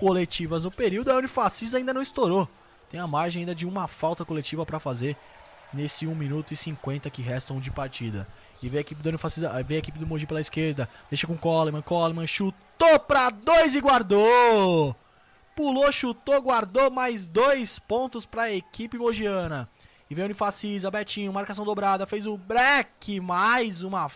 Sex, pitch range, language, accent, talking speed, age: male, 135-200 Hz, Portuguese, Brazilian, 175 wpm, 20-39